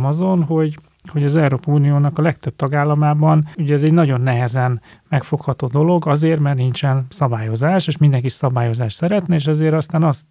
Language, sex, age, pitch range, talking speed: Hungarian, male, 30-49, 135-155 Hz, 165 wpm